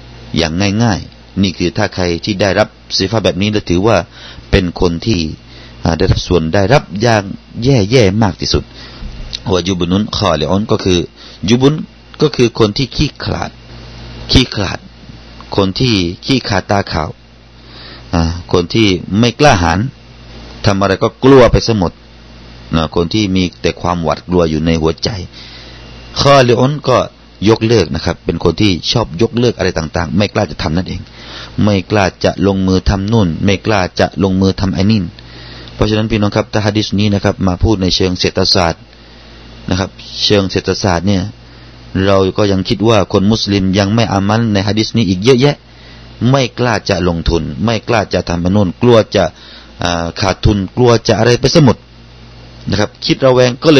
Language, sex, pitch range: Thai, male, 85-110 Hz